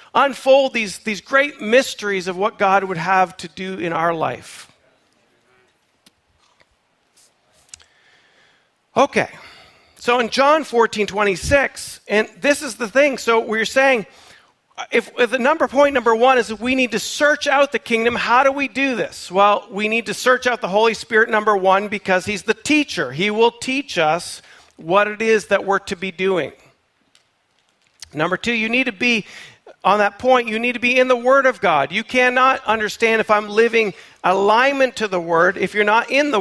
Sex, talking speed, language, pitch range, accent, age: male, 180 wpm, English, 190-245 Hz, American, 40-59